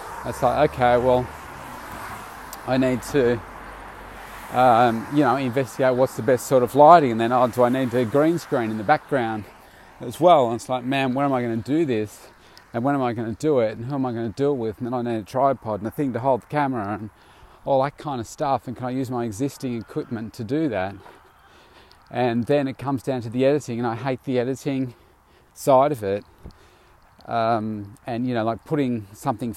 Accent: Australian